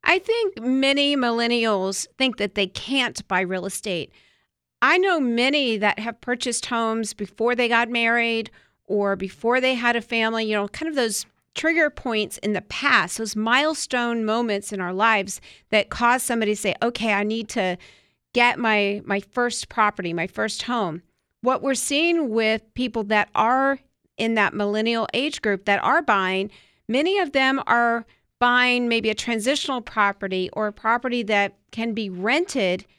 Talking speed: 165 wpm